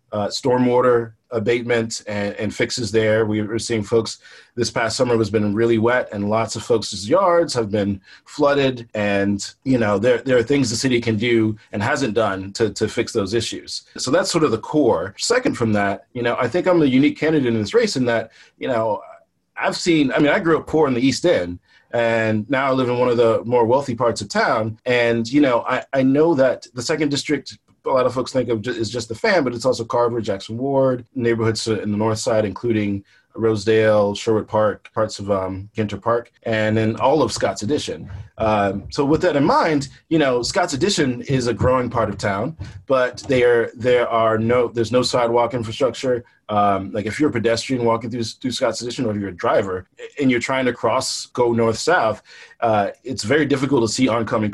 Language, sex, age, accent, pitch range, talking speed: English, male, 30-49, American, 110-125 Hz, 215 wpm